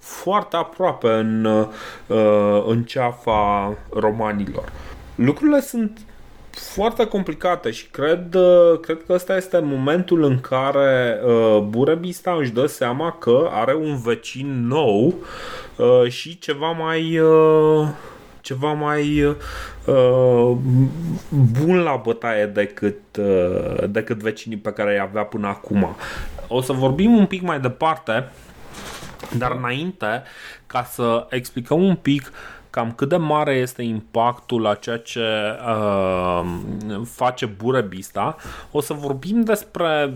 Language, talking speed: Romanian, 110 wpm